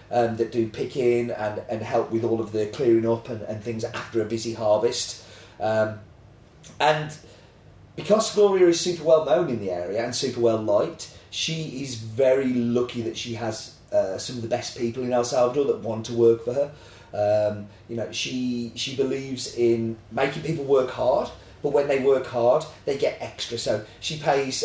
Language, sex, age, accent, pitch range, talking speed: English, male, 30-49, British, 115-140 Hz, 195 wpm